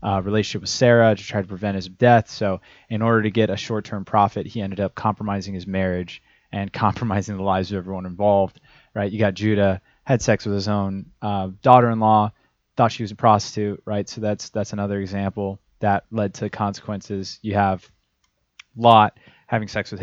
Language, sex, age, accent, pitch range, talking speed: English, male, 20-39, American, 100-115 Hz, 190 wpm